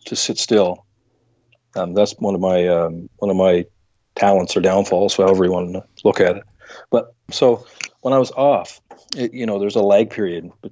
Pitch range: 95-115 Hz